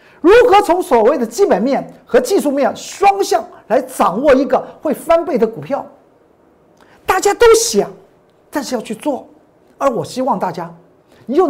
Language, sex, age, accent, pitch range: Chinese, male, 50-69, native, 195-285 Hz